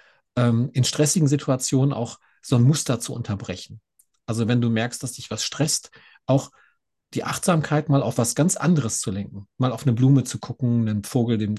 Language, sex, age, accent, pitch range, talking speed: German, male, 40-59, German, 110-140 Hz, 185 wpm